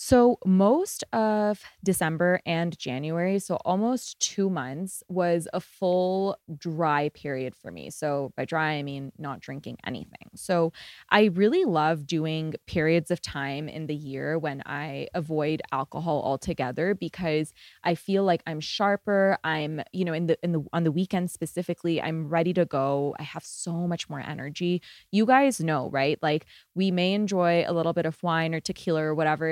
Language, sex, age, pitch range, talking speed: English, female, 20-39, 150-180 Hz, 175 wpm